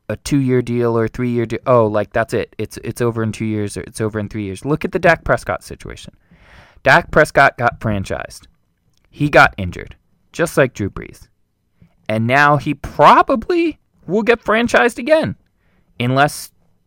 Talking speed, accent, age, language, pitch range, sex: 180 wpm, American, 20-39, English, 110-160 Hz, male